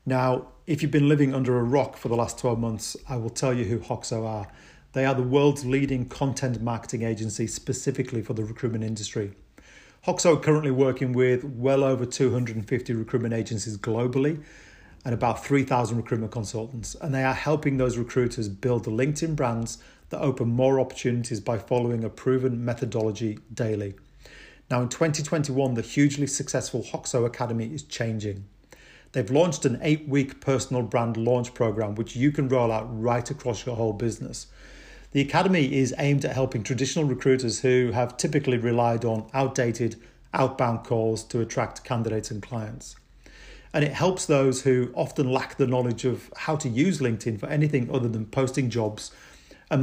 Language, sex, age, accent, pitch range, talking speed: English, male, 40-59, British, 115-135 Hz, 170 wpm